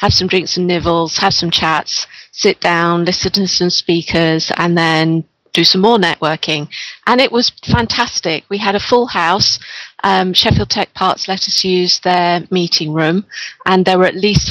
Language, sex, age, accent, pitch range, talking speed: English, female, 40-59, British, 170-195 Hz, 180 wpm